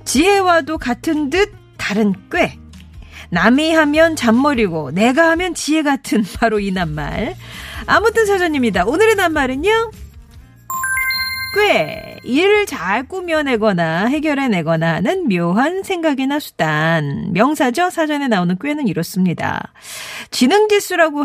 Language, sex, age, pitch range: Korean, female, 40-59, 185-300 Hz